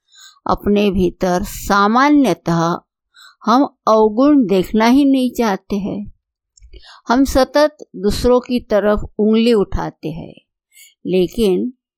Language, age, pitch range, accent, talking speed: Hindi, 60-79, 185-255 Hz, native, 95 wpm